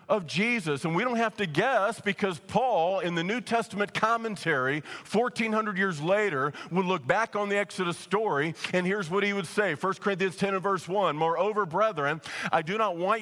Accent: American